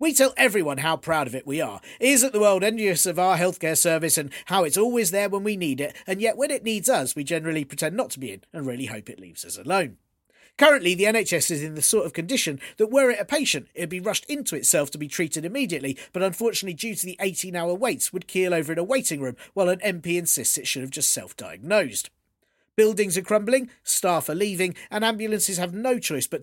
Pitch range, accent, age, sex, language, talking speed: 155-215 Hz, British, 40-59, male, English, 235 wpm